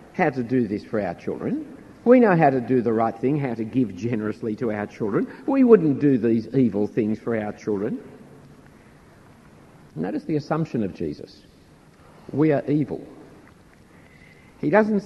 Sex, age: male, 60-79